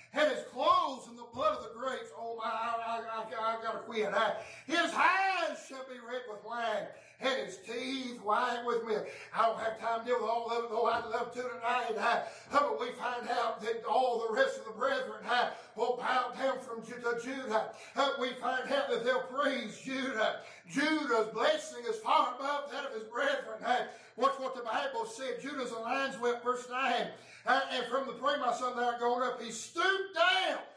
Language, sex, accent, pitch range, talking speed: English, male, American, 230-275 Hz, 195 wpm